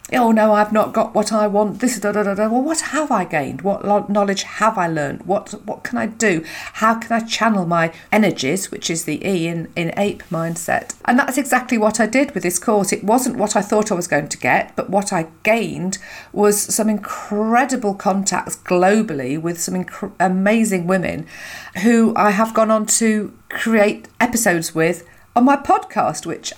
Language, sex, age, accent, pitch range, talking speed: English, female, 50-69, British, 165-220 Hz, 200 wpm